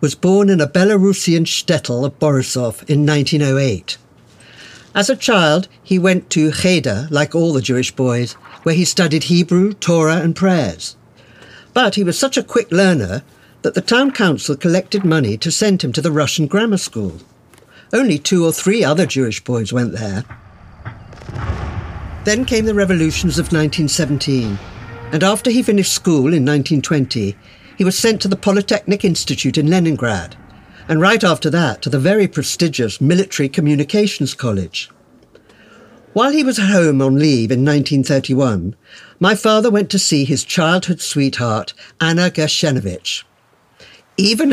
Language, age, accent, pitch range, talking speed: English, 60-79, British, 130-185 Hz, 150 wpm